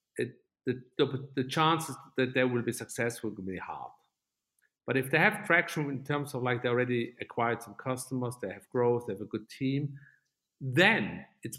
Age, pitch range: 50-69, 115-155 Hz